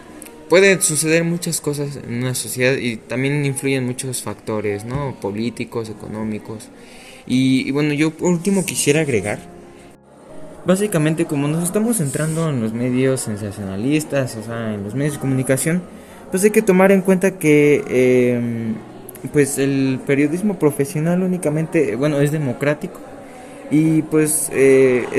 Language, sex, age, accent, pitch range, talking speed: English, male, 20-39, Mexican, 110-150 Hz, 140 wpm